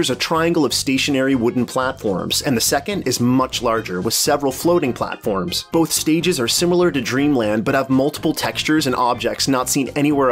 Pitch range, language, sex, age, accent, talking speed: 120-155 Hz, English, male, 30-49, American, 180 wpm